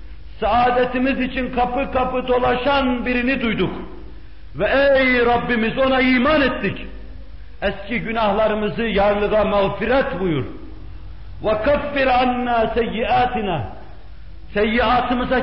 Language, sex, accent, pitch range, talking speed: Turkish, male, native, 155-250 Hz, 75 wpm